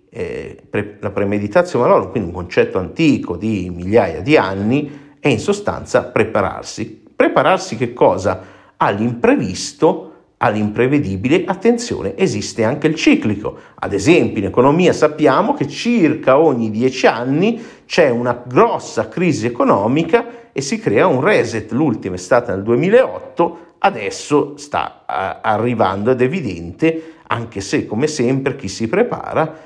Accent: native